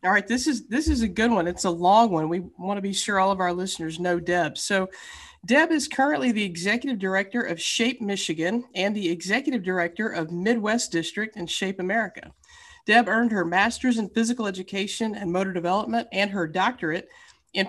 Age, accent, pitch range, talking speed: 40-59, American, 175-220 Hz, 195 wpm